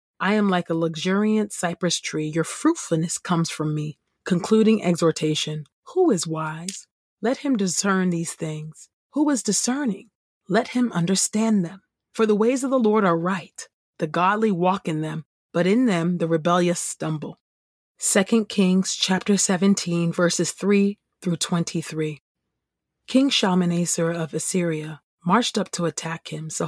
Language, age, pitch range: English, 30-49, 160-200 Hz